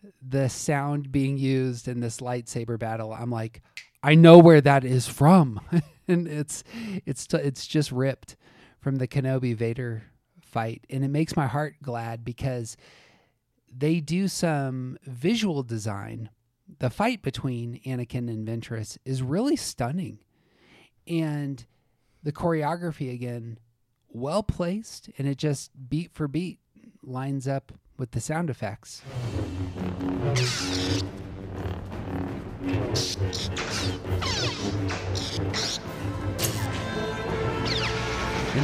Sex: male